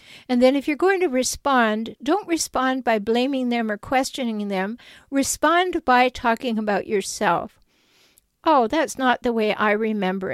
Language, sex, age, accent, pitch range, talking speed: English, female, 50-69, American, 210-265 Hz, 155 wpm